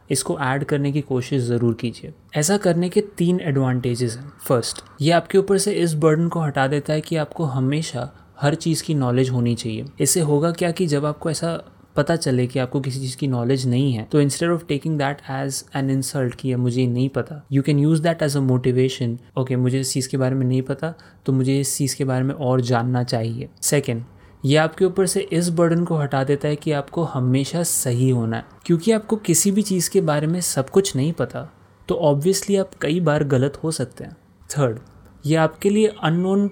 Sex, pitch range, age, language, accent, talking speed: male, 130-165 Hz, 30-49, Hindi, native, 215 wpm